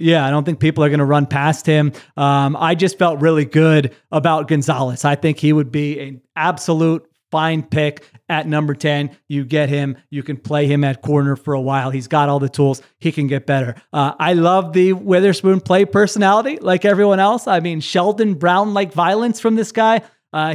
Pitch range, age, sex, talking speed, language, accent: 140-175 Hz, 30-49, male, 205 wpm, English, American